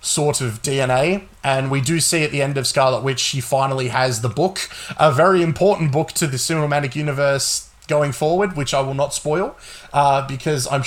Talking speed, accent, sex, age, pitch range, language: 200 wpm, Australian, male, 20-39, 130-170 Hz, English